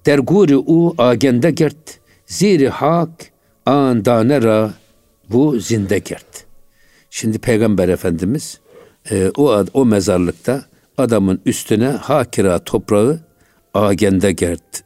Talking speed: 80 wpm